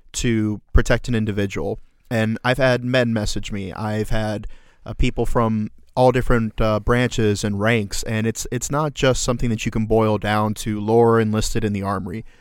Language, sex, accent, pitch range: English, male, American, 110-130 Hz